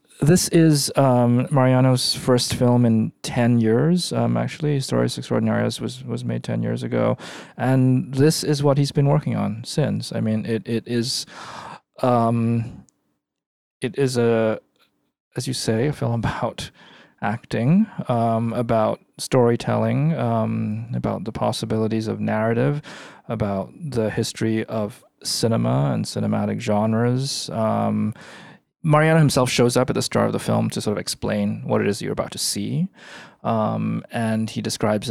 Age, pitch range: 20-39, 110-130 Hz